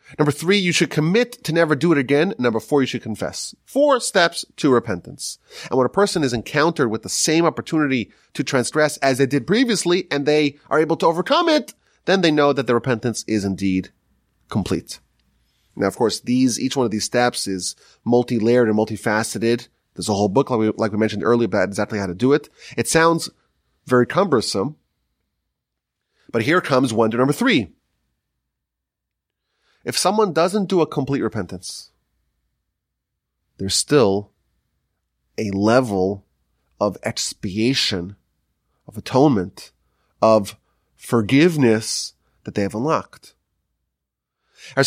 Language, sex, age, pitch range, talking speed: English, male, 30-49, 105-170 Hz, 150 wpm